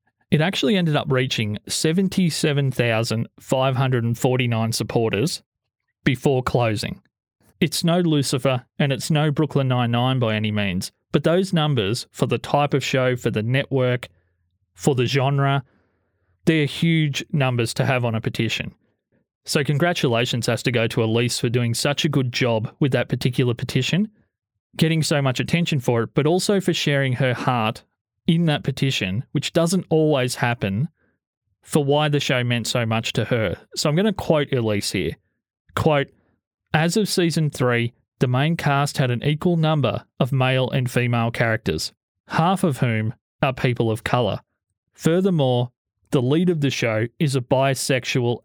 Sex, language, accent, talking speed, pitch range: male, English, Australian, 155 wpm, 120-150 Hz